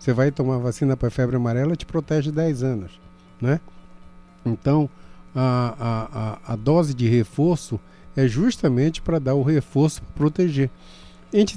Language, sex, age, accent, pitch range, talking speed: Portuguese, male, 50-69, Brazilian, 110-150 Hz, 155 wpm